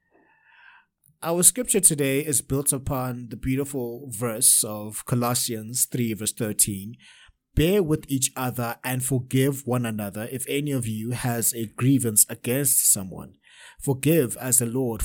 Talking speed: 140 wpm